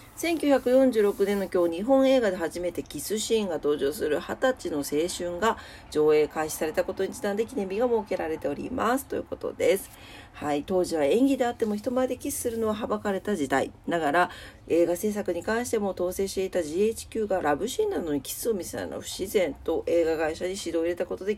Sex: female